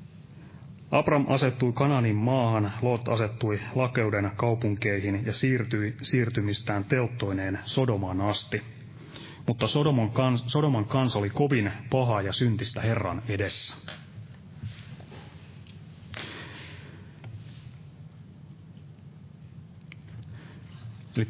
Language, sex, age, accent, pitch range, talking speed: Finnish, male, 30-49, native, 110-140 Hz, 70 wpm